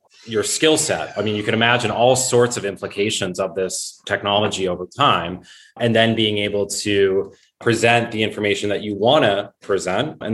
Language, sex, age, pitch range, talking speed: English, male, 20-39, 100-120 Hz, 180 wpm